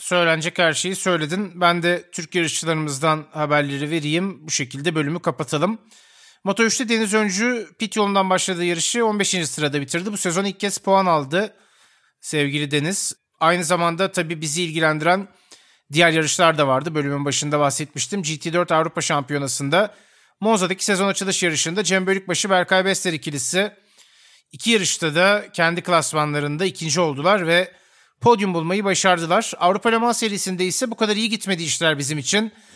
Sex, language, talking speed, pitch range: male, Turkish, 145 wpm, 160-195 Hz